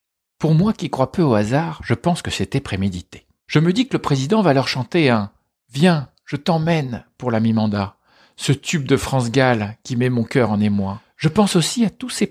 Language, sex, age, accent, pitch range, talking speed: French, male, 50-69, French, 105-160 Hz, 220 wpm